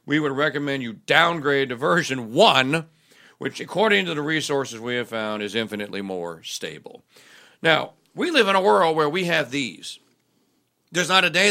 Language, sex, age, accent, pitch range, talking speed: English, male, 50-69, American, 115-160 Hz, 175 wpm